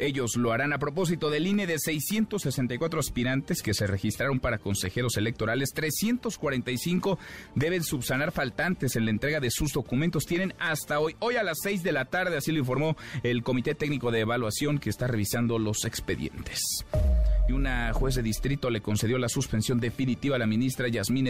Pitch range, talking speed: 115-155 Hz, 180 wpm